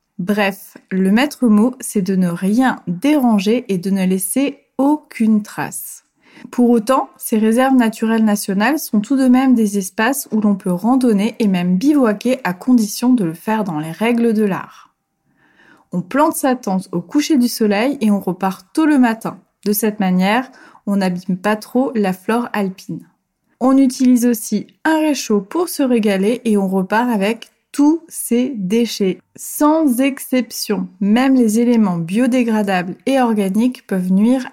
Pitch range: 200-255 Hz